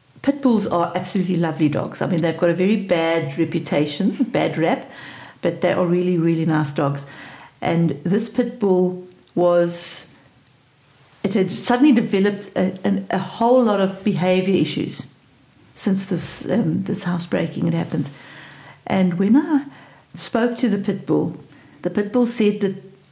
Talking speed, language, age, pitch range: 155 wpm, English, 60-79, 165-205 Hz